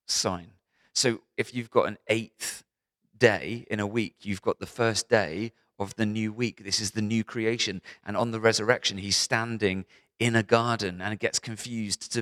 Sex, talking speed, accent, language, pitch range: male, 200 wpm, British, English, 95-115 Hz